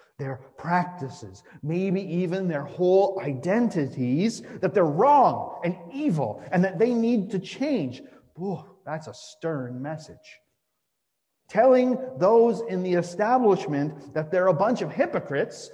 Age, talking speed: 40-59, 125 wpm